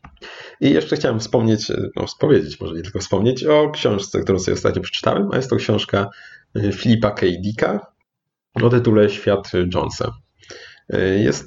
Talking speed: 140 wpm